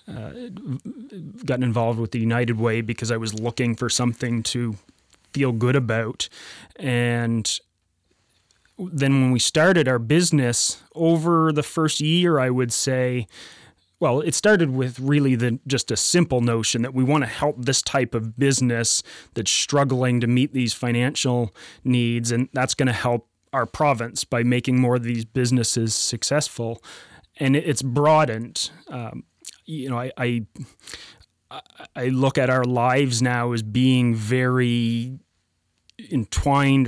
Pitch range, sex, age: 120-135 Hz, male, 30-49